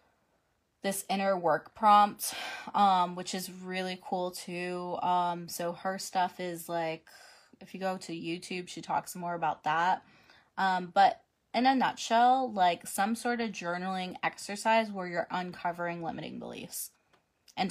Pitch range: 175-200 Hz